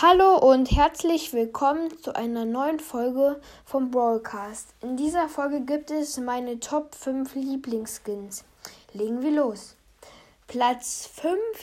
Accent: German